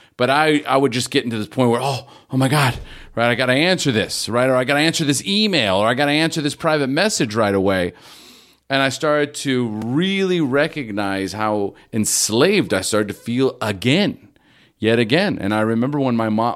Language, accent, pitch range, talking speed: English, American, 110-140 Hz, 215 wpm